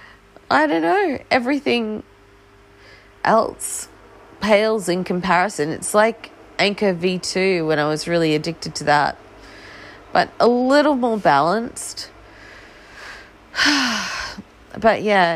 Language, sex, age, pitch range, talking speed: English, female, 30-49, 140-215 Hz, 100 wpm